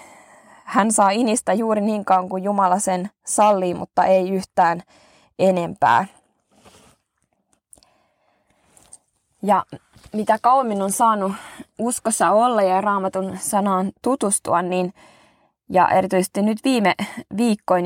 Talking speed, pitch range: 105 wpm, 185-215 Hz